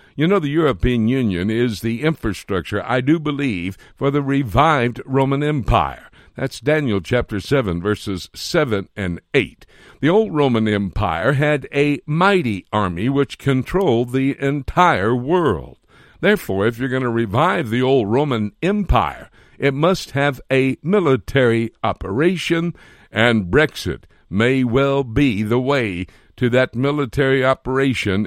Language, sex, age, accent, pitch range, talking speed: English, male, 60-79, American, 110-145 Hz, 135 wpm